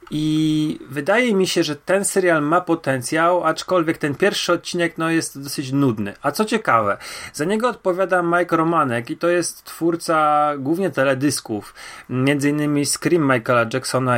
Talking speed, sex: 150 wpm, male